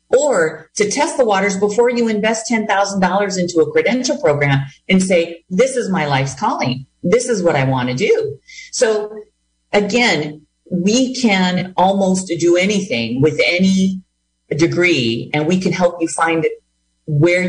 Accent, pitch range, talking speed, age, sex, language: American, 140-185 Hz, 150 wpm, 40-59, female, English